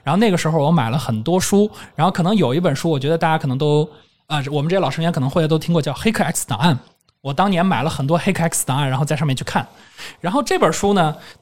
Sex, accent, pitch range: male, native, 150-200 Hz